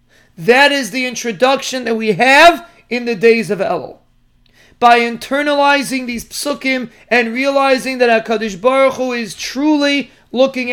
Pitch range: 230-260 Hz